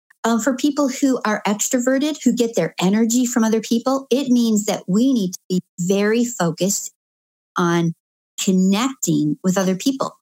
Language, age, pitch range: English, 50-69, 180-245 Hz